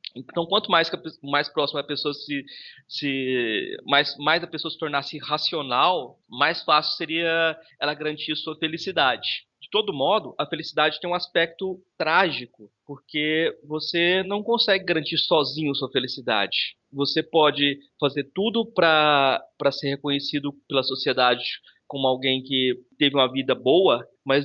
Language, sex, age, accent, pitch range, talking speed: Portuguese, male, 20-39, Brazilian, 140-165 Hz, 140 wpm